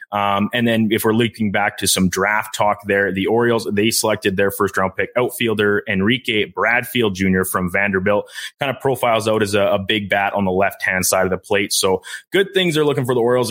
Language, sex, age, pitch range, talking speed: English, male, 20-39, 95-115 Hz, 230 wpm